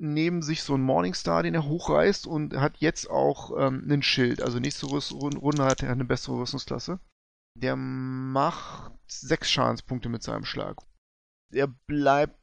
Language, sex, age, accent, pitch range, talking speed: German, male, 30-49, German, 130-165 Hz, 155 wpm